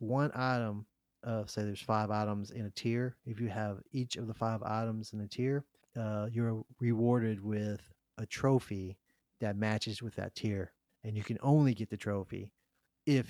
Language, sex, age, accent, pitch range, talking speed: English, male, 30-49, American, 105-120 Hz, 180 wpm